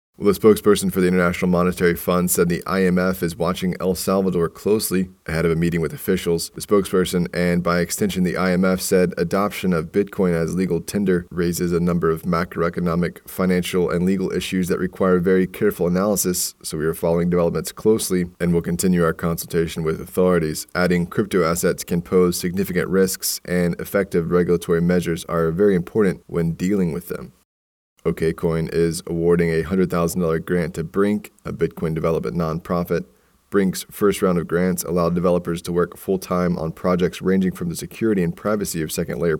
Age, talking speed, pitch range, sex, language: 20-39, 170 wpm, 85-95 Hz, male, English